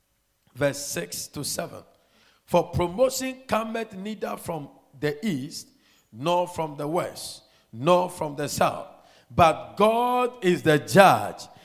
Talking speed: 125 wpm